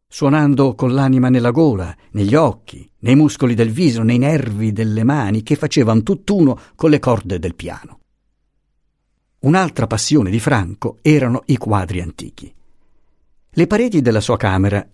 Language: Italian